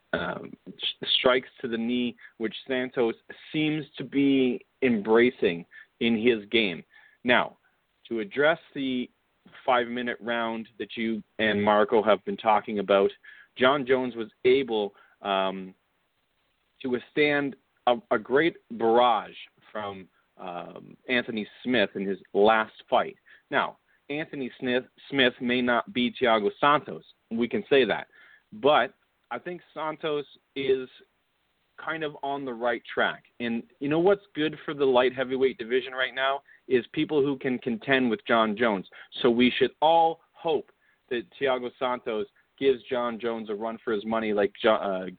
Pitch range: 110-150 Hz